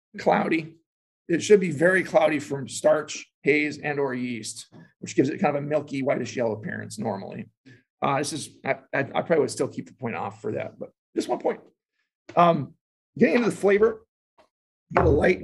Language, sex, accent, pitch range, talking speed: English, male, American, 130-175 Hz, 185 wpm